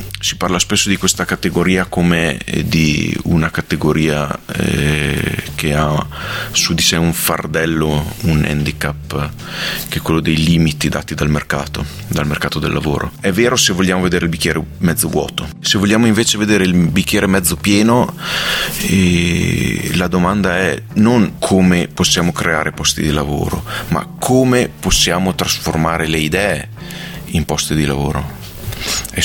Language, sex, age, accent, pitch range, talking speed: Italian, male, 30-49, native, 75-100 Hz, 145 wpm